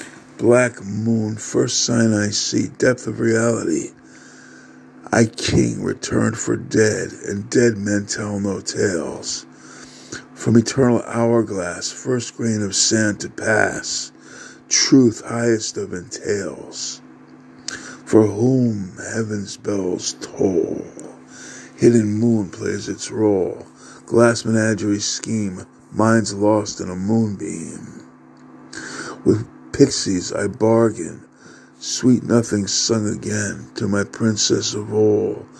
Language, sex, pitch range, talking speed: English, male, 100-115 Hz, 110 wpm